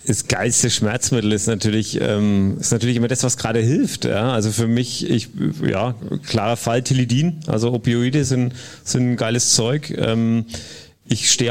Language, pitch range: German, 105-125 Hz